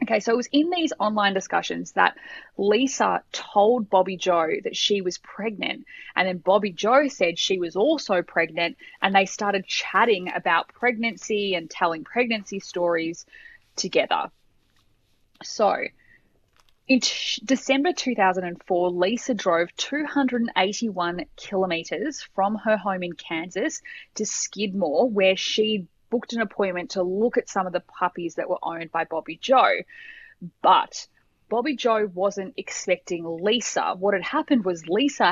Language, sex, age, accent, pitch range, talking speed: English, female, 20-39, Australian, 180-230 Hz, 140 wpm